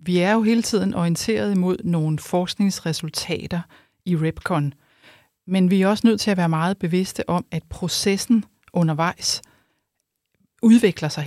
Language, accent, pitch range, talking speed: English, Danish, 165-200 Hz, 145 wpm